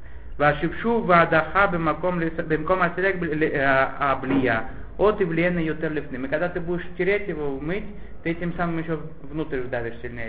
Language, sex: Russian, male